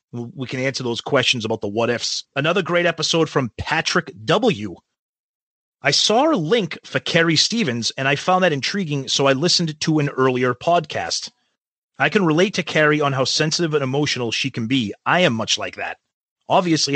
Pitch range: 130-170 Hz